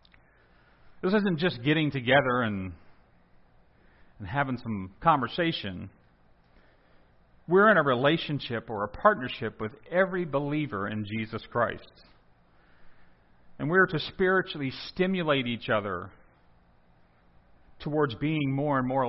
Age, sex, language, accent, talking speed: 40-59, male, English, American, 110 wpm